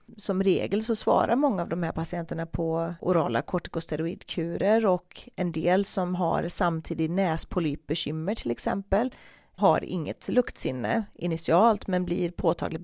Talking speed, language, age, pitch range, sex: 130 wpm, Swedish, 30-49, 165-195 Hz, female